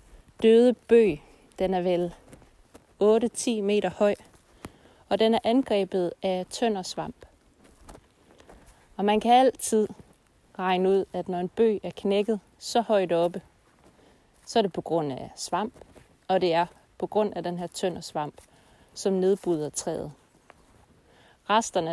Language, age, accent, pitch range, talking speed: Danish, 30-49, native, 175-215 Hz, 140 wpm